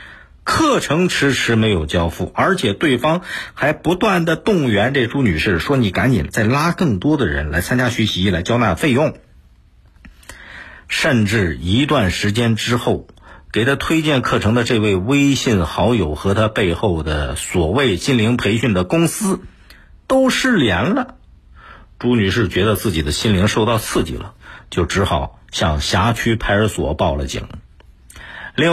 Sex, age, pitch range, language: male, 50-69, 85-125 Hz, Chinese